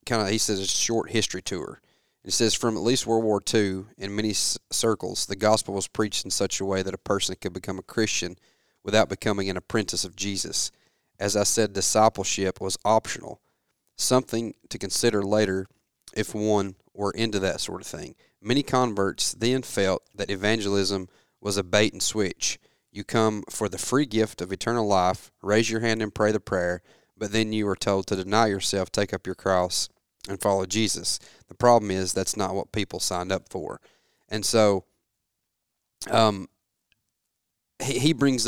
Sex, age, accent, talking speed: male, 30-49, American, 180 wpm